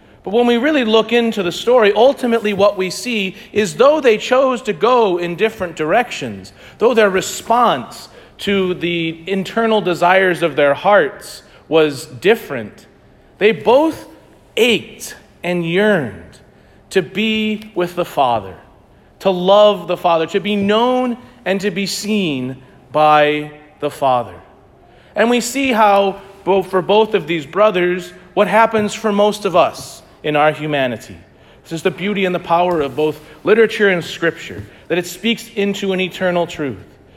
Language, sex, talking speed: English, male, 150 wpm